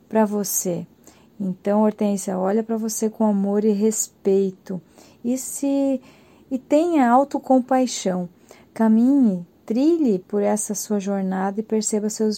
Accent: Brazilian